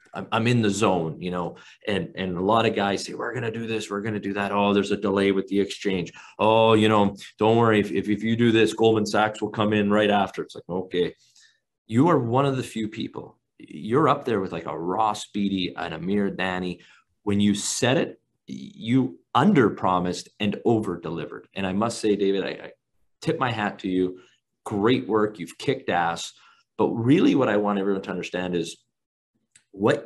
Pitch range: 95-115 Hz